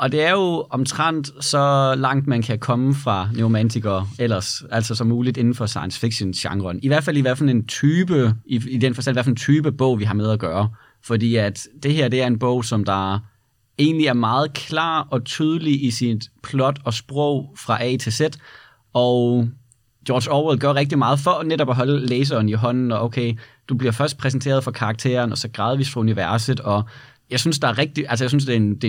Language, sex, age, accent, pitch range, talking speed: Danish, male, 30-49, native, 115-140 Hz, 220 wpm